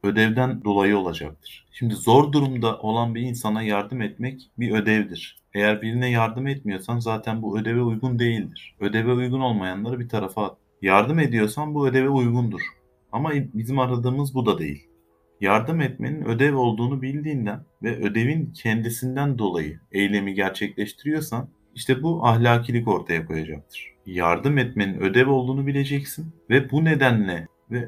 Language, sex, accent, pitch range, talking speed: Turkish, male, native, 100-125 Hz, 140 wpm